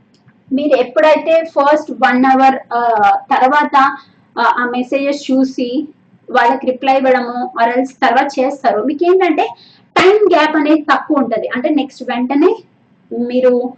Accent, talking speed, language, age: native, 115 wpm, Telugu, 20-39